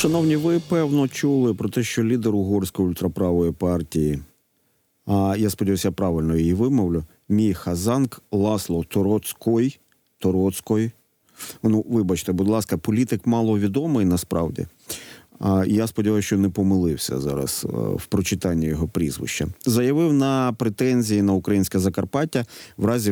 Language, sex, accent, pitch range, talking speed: Ukrainian, male, native, 95-120 Hz, 120 wpm